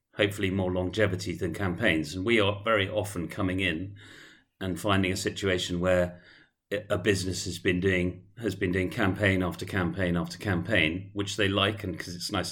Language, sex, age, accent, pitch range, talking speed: English, male, 40-59, British, 90-105 Hz, 175 wpm